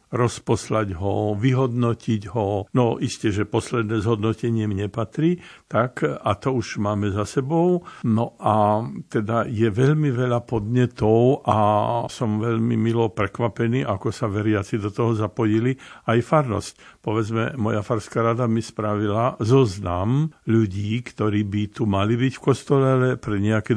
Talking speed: 140 wpm